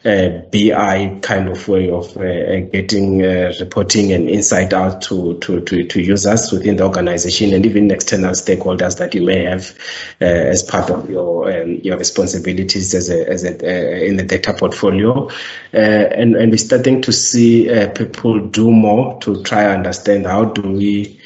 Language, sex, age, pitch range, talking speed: English, male, 30-49, 95-105 Hz, 180 wpm